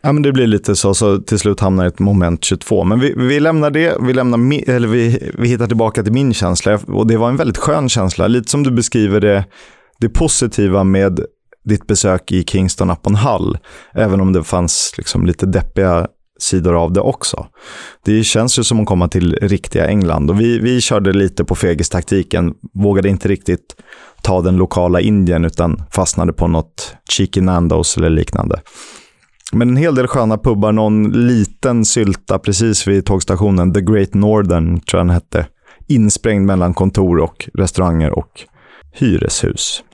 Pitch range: 95-115 Hz